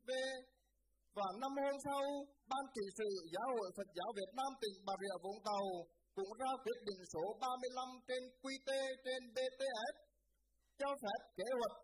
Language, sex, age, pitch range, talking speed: Vietnamese, male, 20-39, 195-265 Hz, 160 wpm